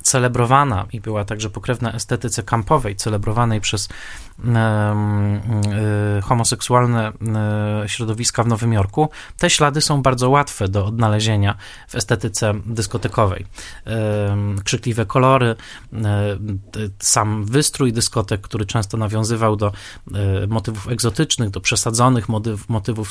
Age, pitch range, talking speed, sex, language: 20-39, 105-125 Hz, 100 wpm, male, Polish